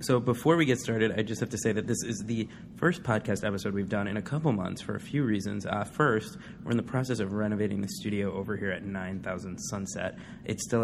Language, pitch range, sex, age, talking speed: English, 95-110 Hz, male, 20-39, 245 wpm